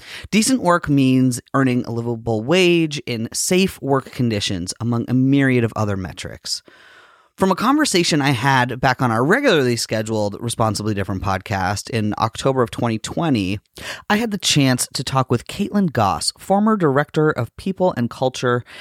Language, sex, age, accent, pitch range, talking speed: English, male, 30-49, American, 115-165 Hz, 155 wpm